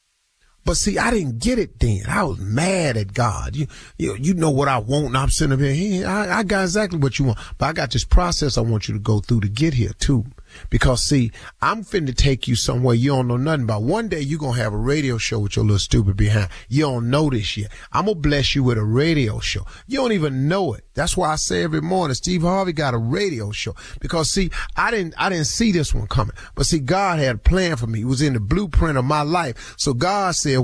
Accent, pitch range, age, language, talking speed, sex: American, 115-160 Hz, 40-59, English, 260 wpm, male